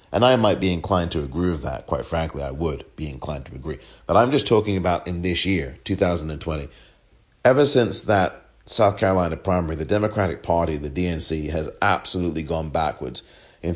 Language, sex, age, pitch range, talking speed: English, male, 40-59, 80-100 Hz, 185 wpm